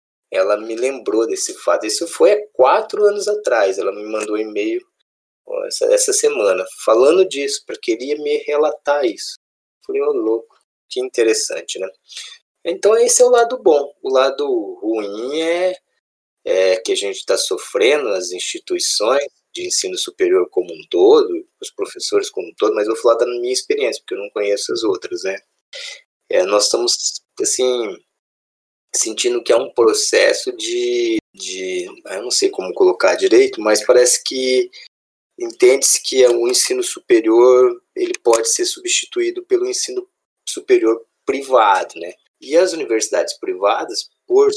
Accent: Brazilian